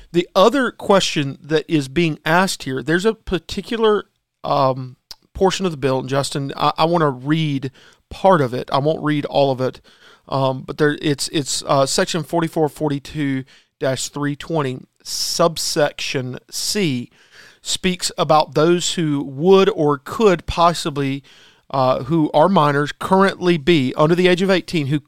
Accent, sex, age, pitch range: American, male, 40-59, 145-185 Hz